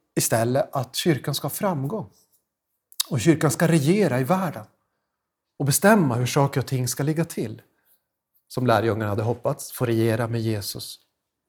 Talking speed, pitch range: 145 wpm, 125-185 Hz